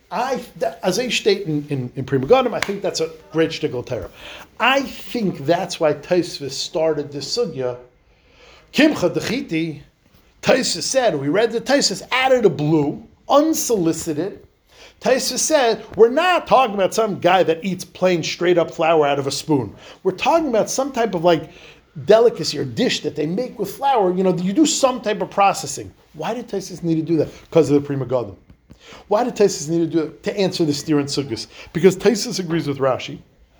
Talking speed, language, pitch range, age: 185 wpm, English, 155-235 Hz, 50-69